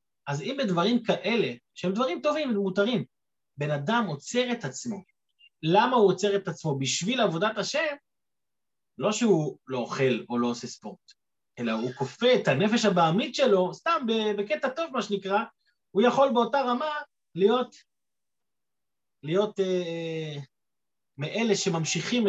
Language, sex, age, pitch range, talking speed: Hebrew, male, 30-49, 165-235 Hz, 135 wpm